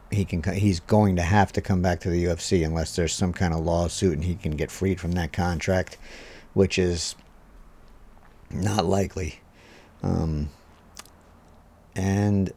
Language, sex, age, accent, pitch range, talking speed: English, male, 50-69, American, 85-100 Hz, 155 wpm